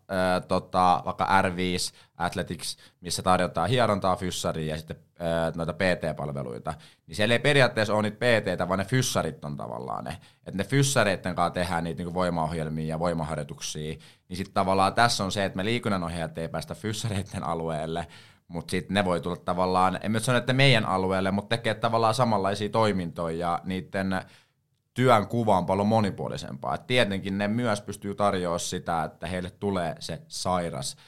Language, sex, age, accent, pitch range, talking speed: Finnish, male, 20-39, native, 85-105 Hz, 160 wpm